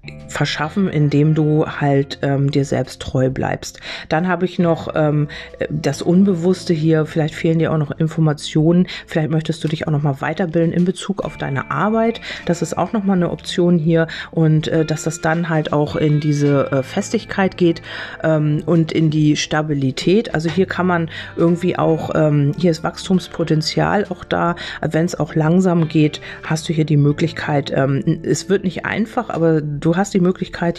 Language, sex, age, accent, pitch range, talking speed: German, female, 40-59, German, 155-175 Hz, 180 wpm